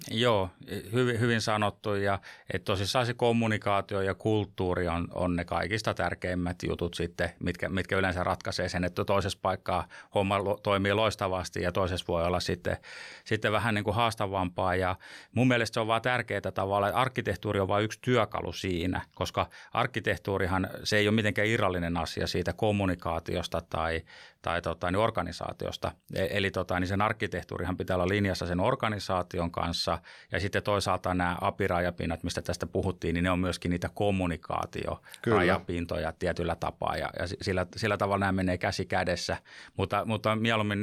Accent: native